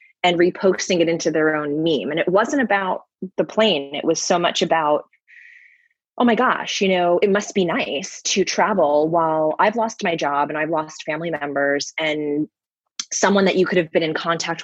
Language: English